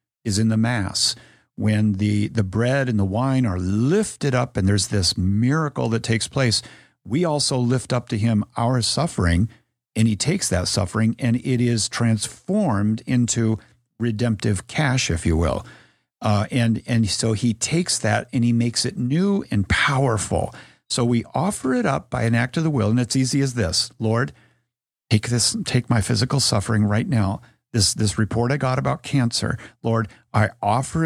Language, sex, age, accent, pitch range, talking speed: English, male, 50-69, American, 105-125 Hz, 180 wpm